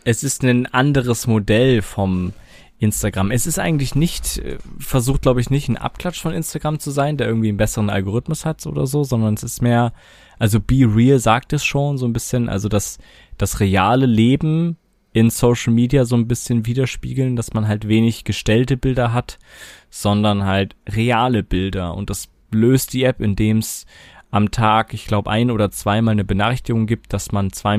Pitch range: 105-130 Hz